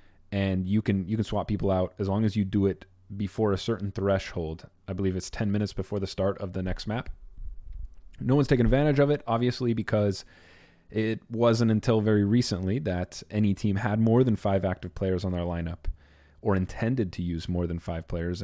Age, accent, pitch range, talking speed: 30-49, American, 95-110 Hz, 205 wpm